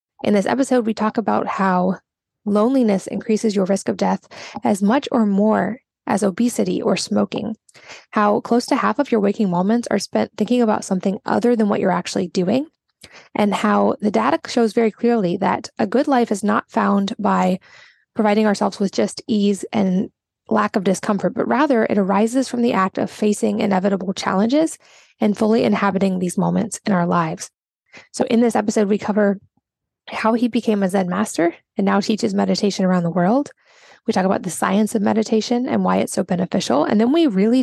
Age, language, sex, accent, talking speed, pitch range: 10-29, English, female, American, 190 wpm, 195-230 Hz